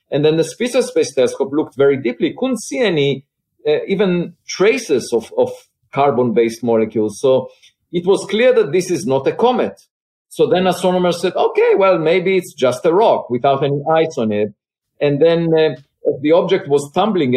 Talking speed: 180 wpm